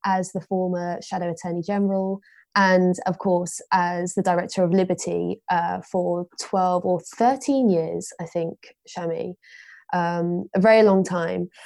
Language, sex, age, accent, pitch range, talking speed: English, female, 20-39, British, 175-205 Hz, 140 wpm